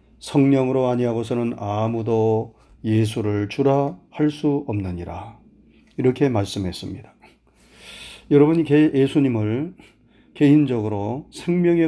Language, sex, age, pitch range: Korean, male, 40-59, 110-150 Hz